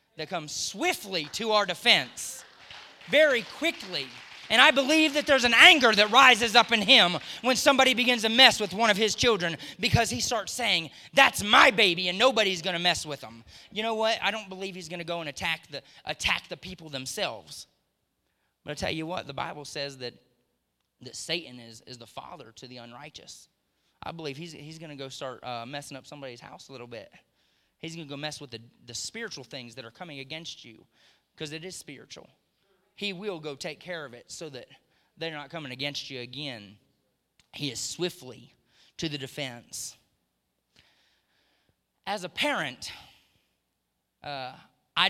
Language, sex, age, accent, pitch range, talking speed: English, male, 30-49, American, 125-195 Hz, 185 wpm